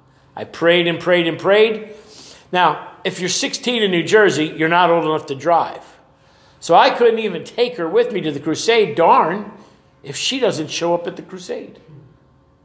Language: English